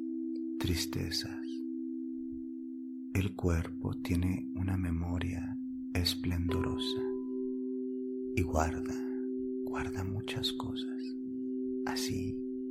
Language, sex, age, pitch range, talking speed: English, male, 40-59, 65-95 Hz, 60 wpm